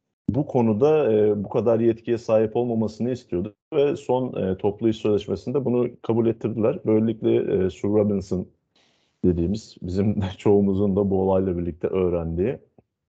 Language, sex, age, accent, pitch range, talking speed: Turkish, male, 30-49, native, 100-120 Hz, 140 wpm